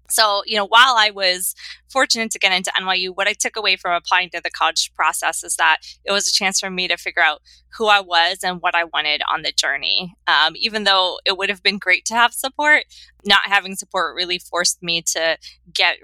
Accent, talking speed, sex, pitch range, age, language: American, 230 wpm, female, 165-200 Hz, 20-39, English